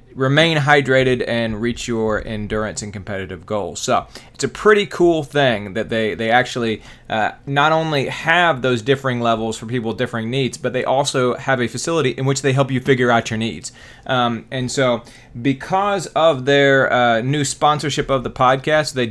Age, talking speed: 30-49, 185 wpm